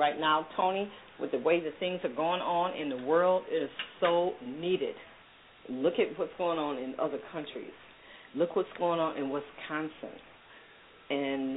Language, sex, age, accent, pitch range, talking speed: English, female, 40-59, American, 145-190 Hz, 170 wpm